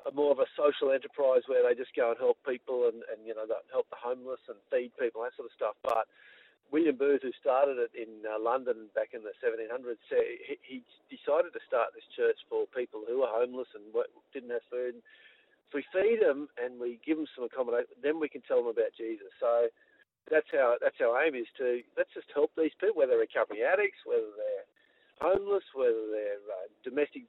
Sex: male